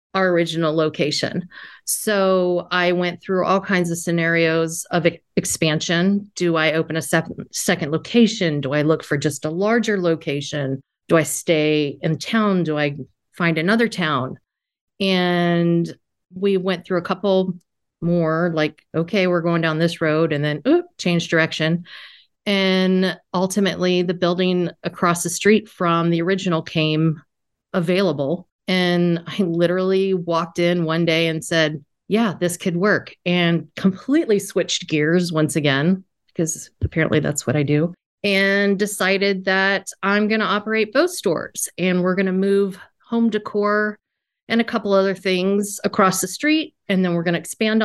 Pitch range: 165-195 Hz